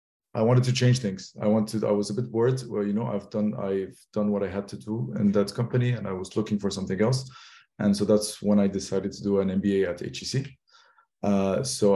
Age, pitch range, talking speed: 20-39, 105-120 Hz, 240 wpm